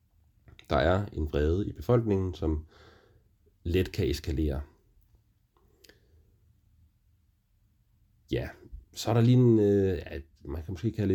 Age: 30-49